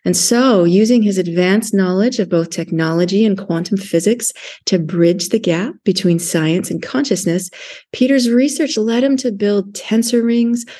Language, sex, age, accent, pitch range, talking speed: English, female, 30-49, American, 190-240 Hz, 155 wpm